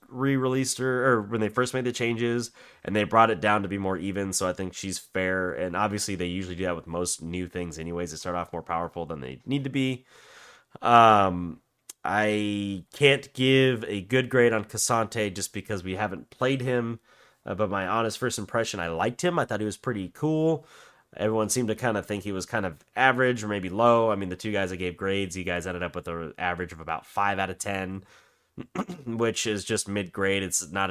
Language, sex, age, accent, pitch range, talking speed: English, male, 30-49, American, 90-115 Hz, 225 wpm